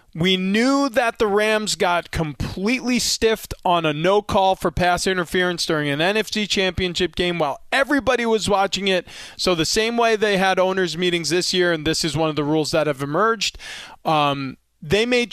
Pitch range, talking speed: 165-220 Hz, 190 wpm